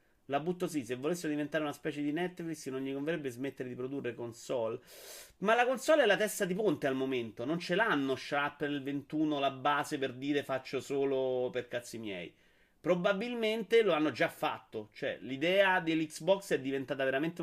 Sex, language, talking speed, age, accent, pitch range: male, Italian, 180 wpm, 30-49, native, 130-165 Hz